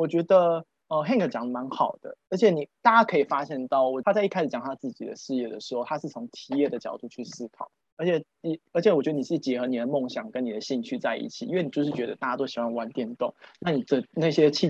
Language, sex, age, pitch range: Chinese, male, 20-39, 130-180 Hz